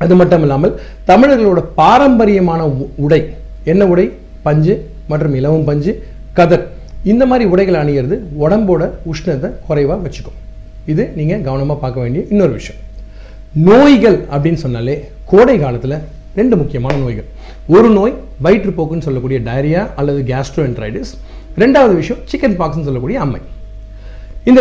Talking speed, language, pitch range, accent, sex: 120 wpm, Tamil, 130-185 Hz, native, male